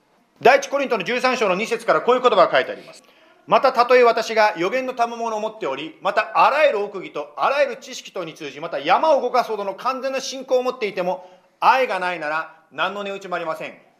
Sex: male